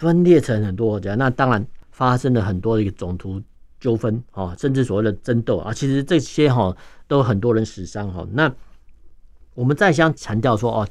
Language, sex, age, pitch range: Chinese, male, 50-69, 105-135 Hz